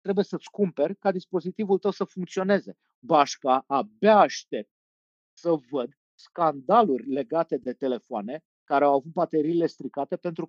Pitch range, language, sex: 135-180 Hz, Romanian, male